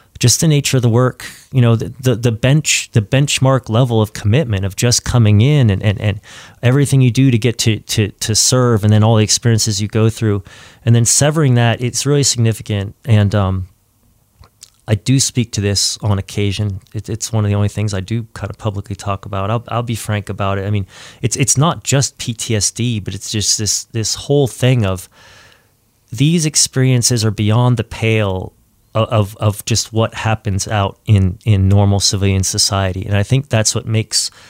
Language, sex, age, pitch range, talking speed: English, male, 30-49, 105-120 Hz, 200 wpm